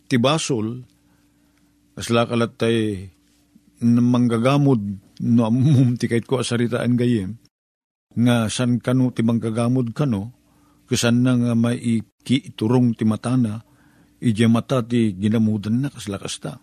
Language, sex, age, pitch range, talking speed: Filipino, male, 50-69, 115-135 Hz, 95 wpm